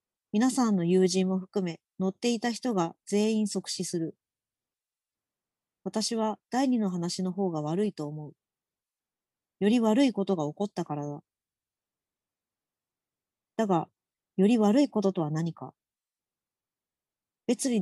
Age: 40-59